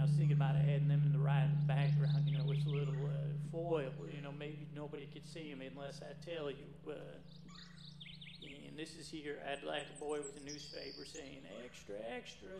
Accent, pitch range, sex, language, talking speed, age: American, 115-160 Hz, male, English, 215 wpm, 40-59